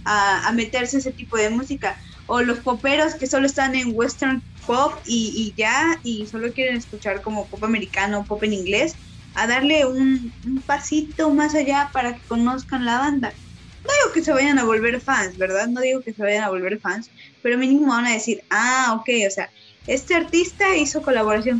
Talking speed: 195 wpm